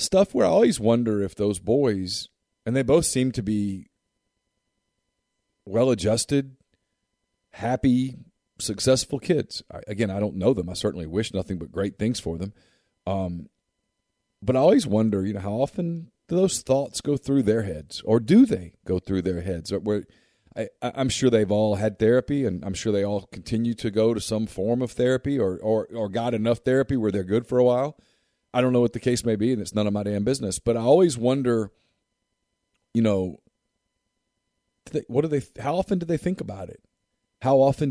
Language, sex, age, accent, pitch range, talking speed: English, male, 40-59, American, 100-125 Hz, 190 wpm